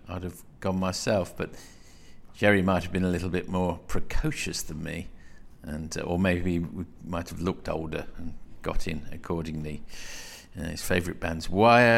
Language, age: English, 50-69